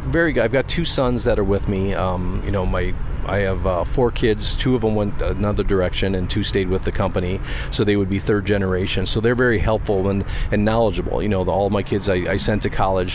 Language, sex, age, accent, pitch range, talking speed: English, male, 40-59, American, 95-105 Hz, 255 wpm